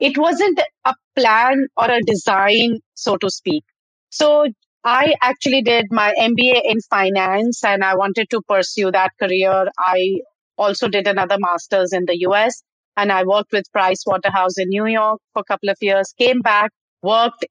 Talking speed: 170 wpm